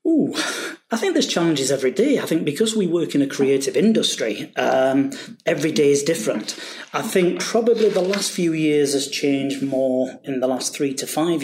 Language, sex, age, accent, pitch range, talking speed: English, male, 30-49, British, 130-170 Hz, 195 wpm